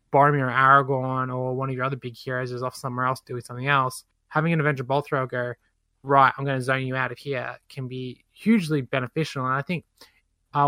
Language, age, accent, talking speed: English, 20-39, Australian, 220 wpm